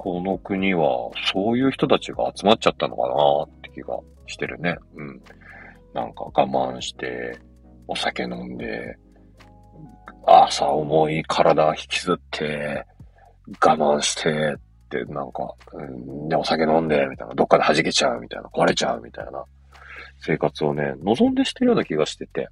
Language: Japanese